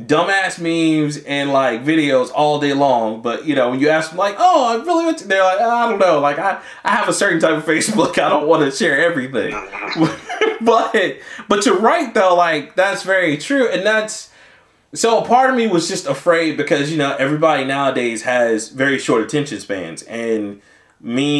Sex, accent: male, American